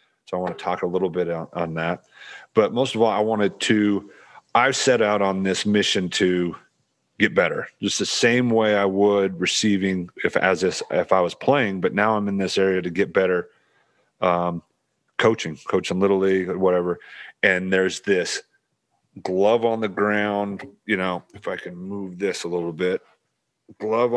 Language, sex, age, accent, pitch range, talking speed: English, male, 40-59, American, 90-110 Hz, 185 wpm